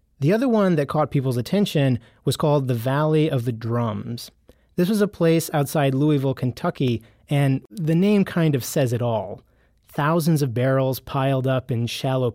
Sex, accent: male, American